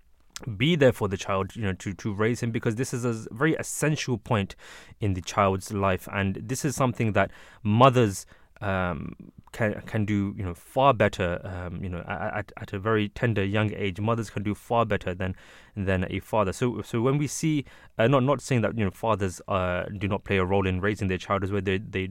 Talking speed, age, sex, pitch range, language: 225 wpm, 20-39, male, 95-115 Hz, English